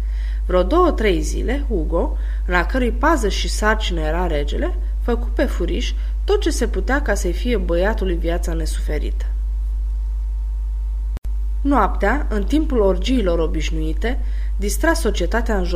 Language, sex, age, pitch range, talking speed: Romanian, female, 20-39, 155-220 Hz, 120 wpm